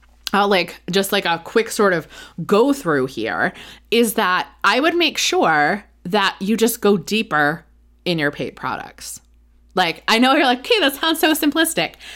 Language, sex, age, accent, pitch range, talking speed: English, female, 20-39, American, 160-230 Hz, 180 wpm